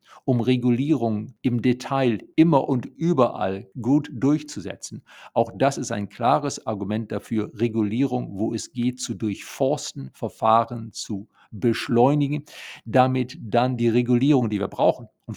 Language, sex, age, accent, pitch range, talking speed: German, male, 50-69, German, 105-135 Hz, 130 wpm